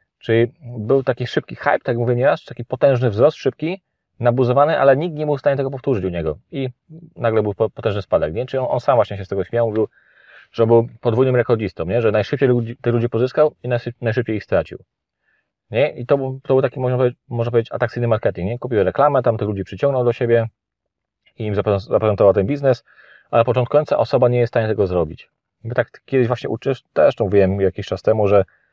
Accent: native